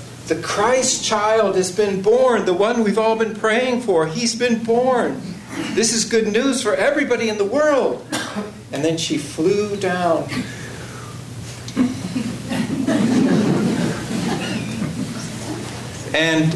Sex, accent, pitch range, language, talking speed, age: male, American, 145-215 Hz, English, 110 wpm, 50-69